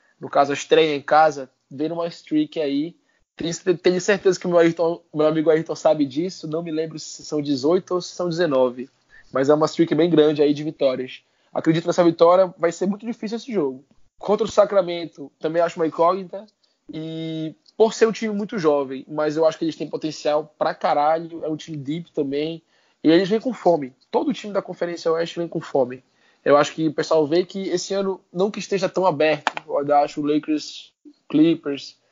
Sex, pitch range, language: male, 145-175 Hz, Portuguese